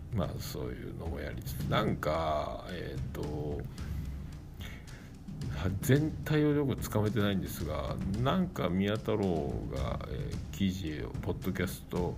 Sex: male